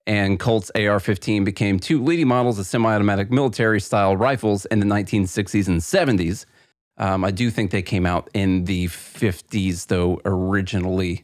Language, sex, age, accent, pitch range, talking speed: English, male, 30-49, American, 100-120 Hz, 150 wpm